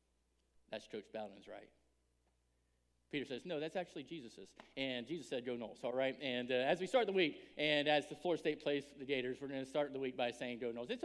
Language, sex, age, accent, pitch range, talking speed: English, male, 40-59, American, 170-225 Hz, 235 wpm